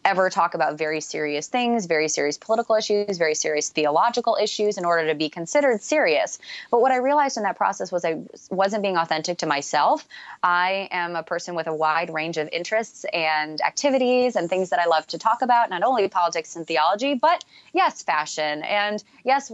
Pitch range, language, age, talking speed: 160-200 Hz, English, 20-39, 195 wpm